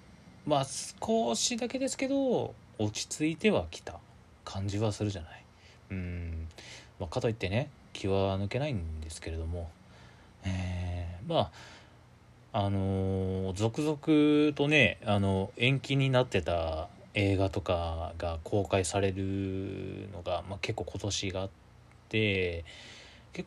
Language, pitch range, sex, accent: Japanese, 95-120 Hz, male, native